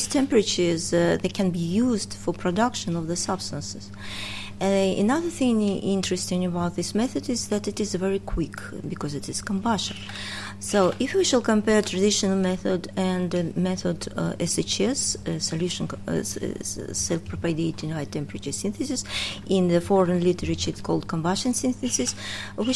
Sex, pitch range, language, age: female, 165-195 Hz, English, 30-49